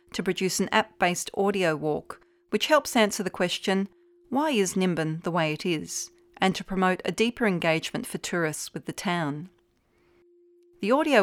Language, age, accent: English, 40-59, Australian